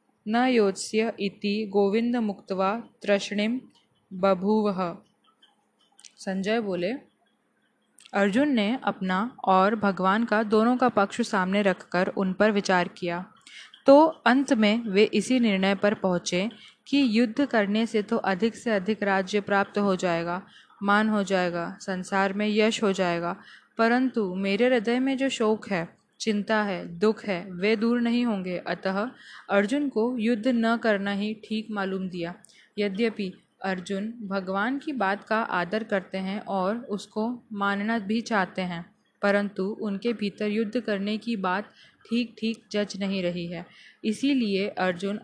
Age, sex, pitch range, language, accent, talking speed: 20-39, female, 195-230 Hz, Hindi, native, 140 wpm